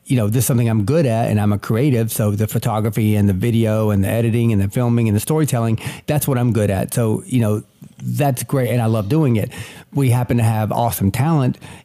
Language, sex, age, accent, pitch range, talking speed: English, male, 40-59, American, 110-135 Hz, 245 wpm